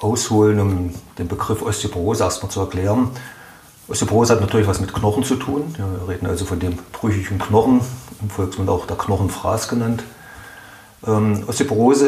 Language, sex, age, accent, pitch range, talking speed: German, male, 40-59, German, 95-115 Hz, 160 wpm